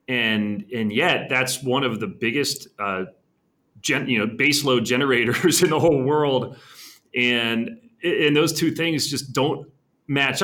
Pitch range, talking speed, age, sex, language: 105-140 Hz, 155 wpm, 30-49, male, English